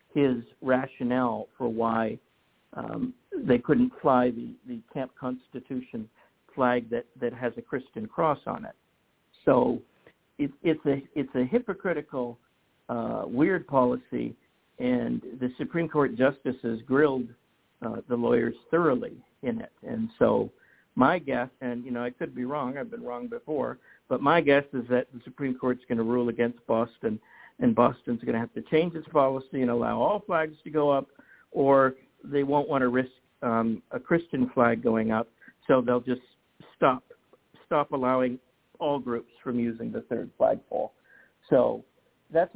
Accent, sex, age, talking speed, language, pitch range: American, male, 60-79, 160 wpm, English, 120-145 Hz